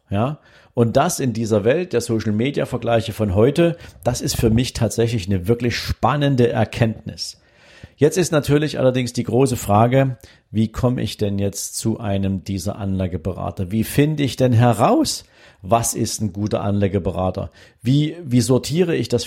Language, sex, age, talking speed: German, male, 50-69, 155 wpm